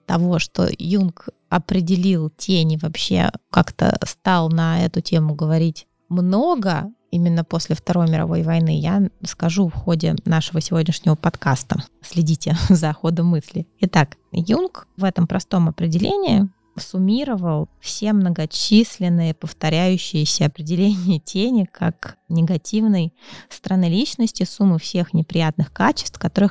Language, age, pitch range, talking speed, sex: Russian, 20-39, 165-195 Hz, 115 wpm, female